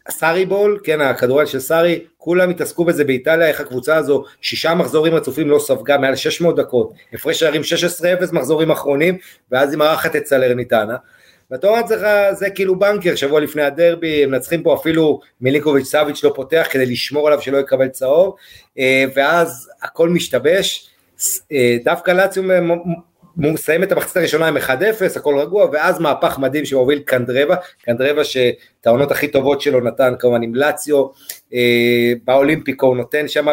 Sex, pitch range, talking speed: male, 140-180 Hz, 155 wpm